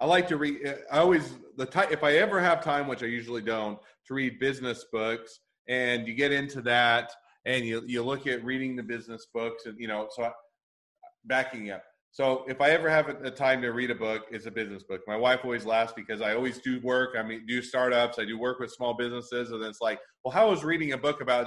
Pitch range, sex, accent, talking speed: 115-130 Hz, male, American, 240 wpm